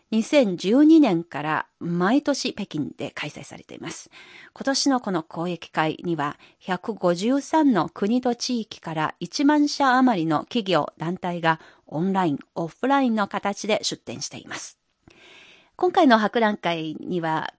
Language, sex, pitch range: Japanese, female, 170-255 Hz